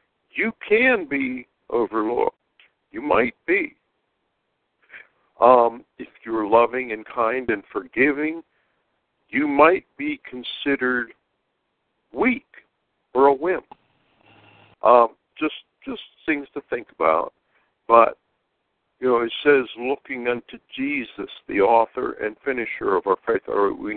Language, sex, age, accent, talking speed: English, male, 60-79, American, 120 wpm